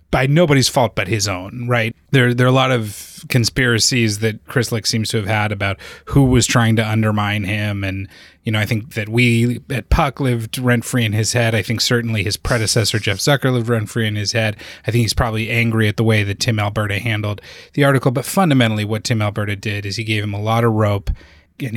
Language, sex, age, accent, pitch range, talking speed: English, male, 20-39, American, 105-125 Hz, 230 wpm